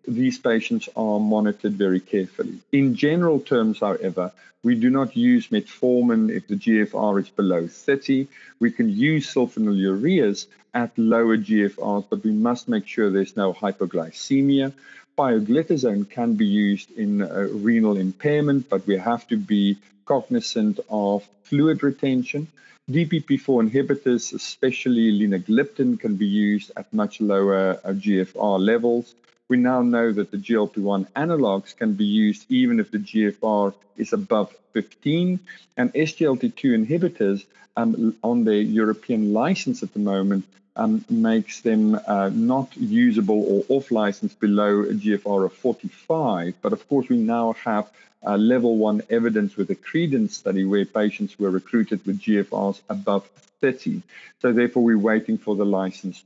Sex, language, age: male, English, 50-69